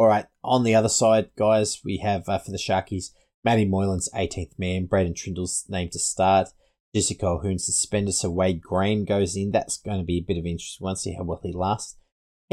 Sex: male